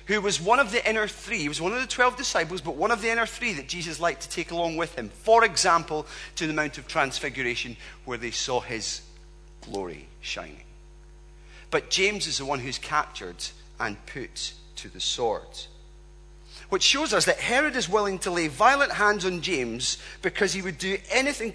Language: English